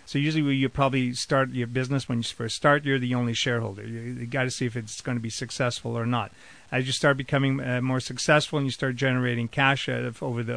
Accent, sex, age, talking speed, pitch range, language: American, male, 40-59, 240 wpm, 120-140 Hz, English